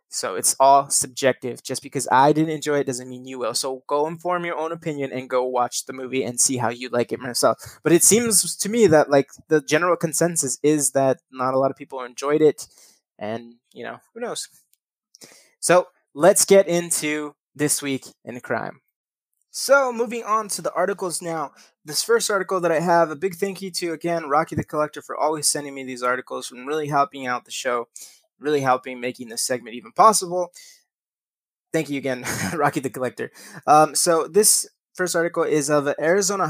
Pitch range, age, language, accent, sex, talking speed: 135-175 Hz, 20-39, English, American, male, 195 wpm